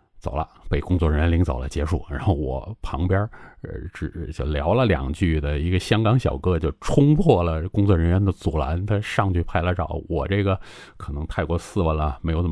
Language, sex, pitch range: Chinese, male, 75-95 Hz